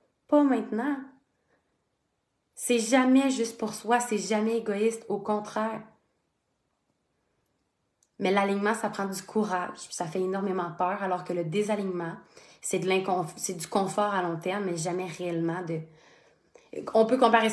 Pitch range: 185-225 Hz